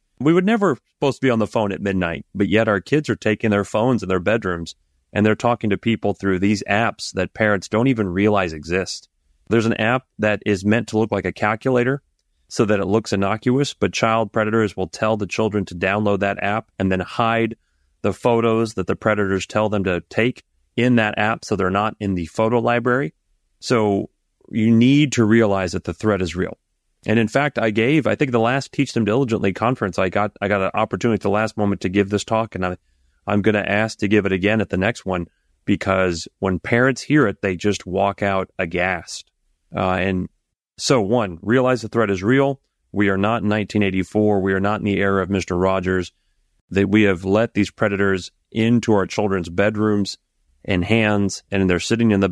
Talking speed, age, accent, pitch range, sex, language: 210 wpm, 30-49, American, 95-115 Hz, male, English